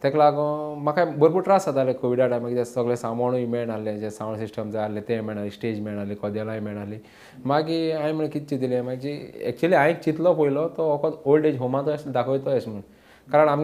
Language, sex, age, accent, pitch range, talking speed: English, male, 20-39, Indian, 120-150 Hz, 80 wpm